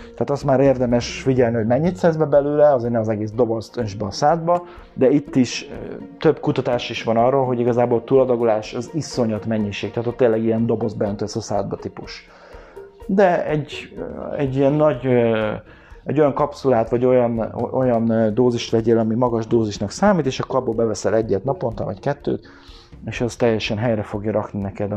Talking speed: 180 wpm